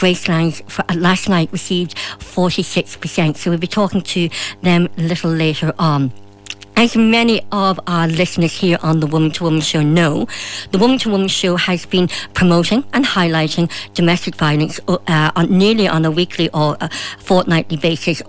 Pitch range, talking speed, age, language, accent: 165-210 Hz, 175 wpm, 60-79, English, British